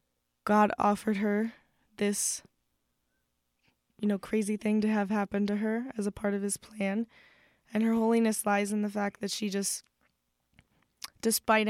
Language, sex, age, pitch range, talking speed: English, female, 10-29, 195-220 Hz, 155 wpm